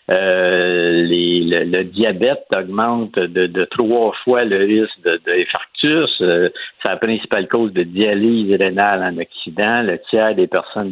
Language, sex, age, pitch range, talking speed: French, male, 60-79, 100-120 Hz, 160 wpm